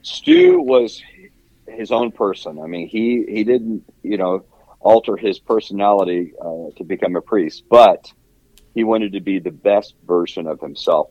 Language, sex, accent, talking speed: English, male, American, 160 wpm